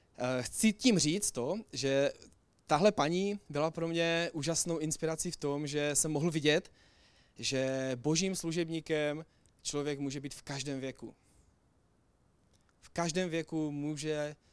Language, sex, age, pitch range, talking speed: Czech, male, 20-39, 140-170 Hz, 130 wpm